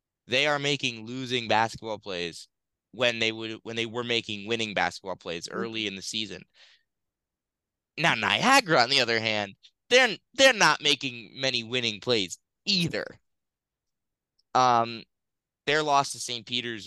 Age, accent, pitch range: 20-39, American, 105-135 Hz